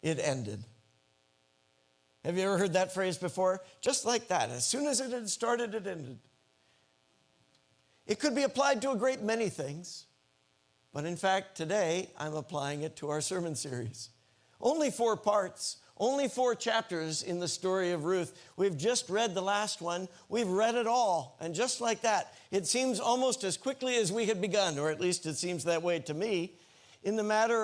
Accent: American